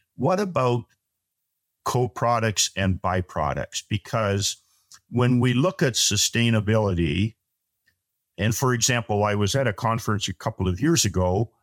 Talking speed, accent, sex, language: 125 wpm, American, male, English